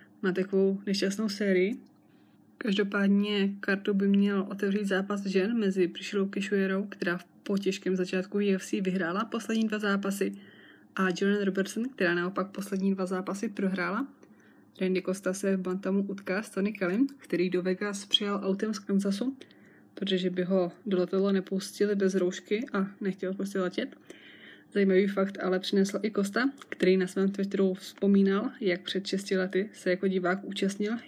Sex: female